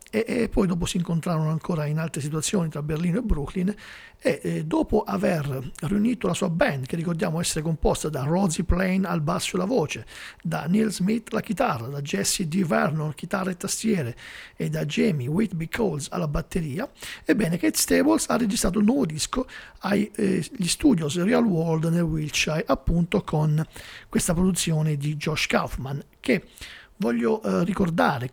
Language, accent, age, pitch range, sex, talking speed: Italian, native, 50-69, 155-210 Hz, male, 160 wpm